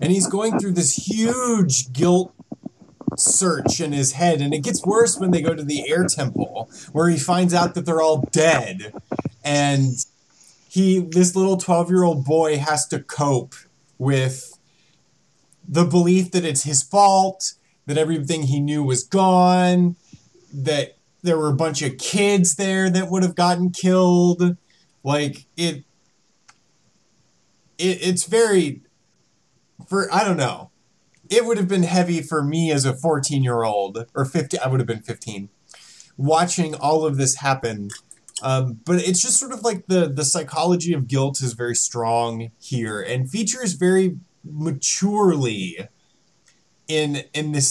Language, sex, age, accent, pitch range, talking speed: English, male, 30-49, American, 140-180 Hz, 150 wpm